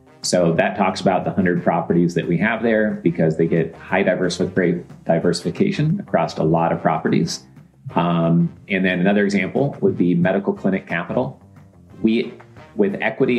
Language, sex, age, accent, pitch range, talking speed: English, male, 30-49, American, 85-110 Hz, 165 wpm